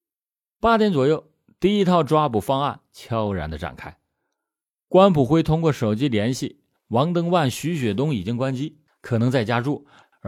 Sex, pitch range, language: male, 115-170 Hz, Chinese